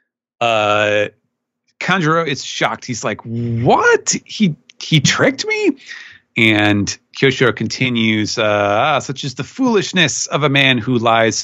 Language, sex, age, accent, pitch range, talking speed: English, male, 30-49, American, 110-145 Hz, 135 wpm